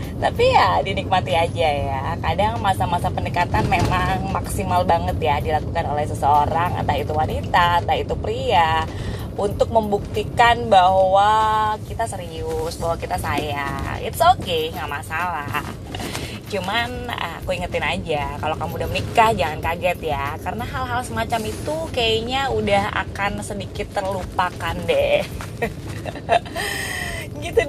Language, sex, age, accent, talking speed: Indonesian, female, 20-39, native, 120 wpm